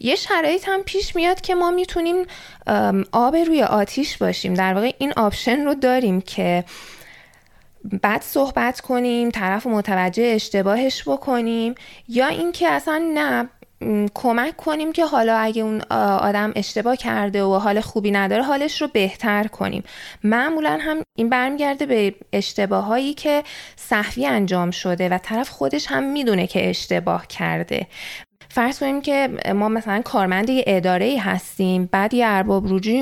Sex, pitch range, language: female, 195-270 Hz, Persian